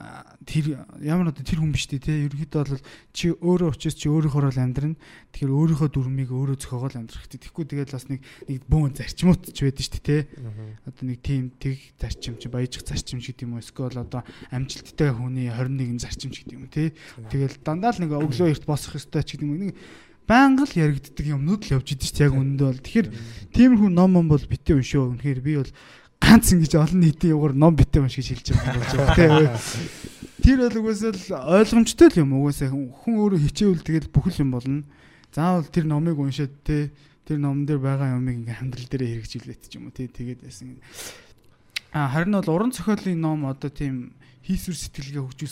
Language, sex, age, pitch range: Korean, male, 20-39, 130-155 Hz